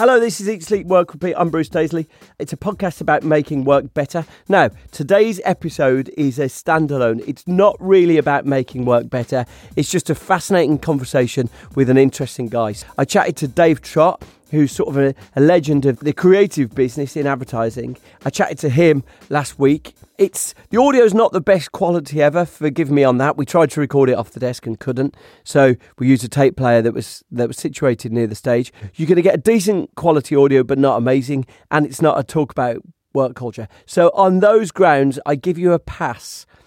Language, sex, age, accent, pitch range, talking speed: English, male, 40-59, British, 130-160 Hz, 210 wpm